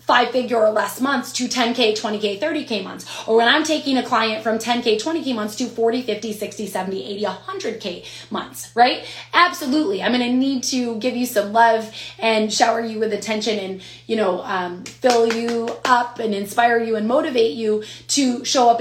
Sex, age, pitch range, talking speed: female, 20-39, 200-250 Hz, 190 wpm